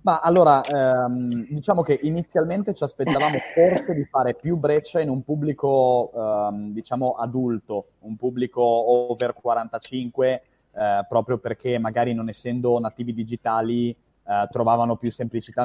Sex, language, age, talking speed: male, Italian, 20-39, 135 wpm